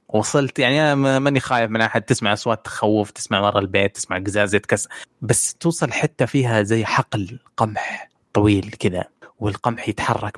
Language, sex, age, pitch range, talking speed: Arabic, male, 20-39, 100-125 Hz, 155 wpm